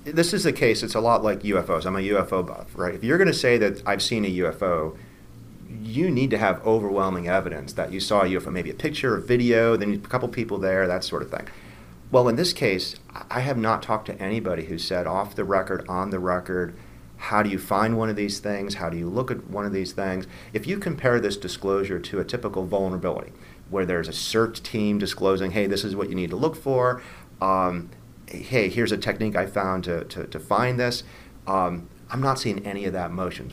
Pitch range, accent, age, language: 95-110 Hz, American, 40-59, English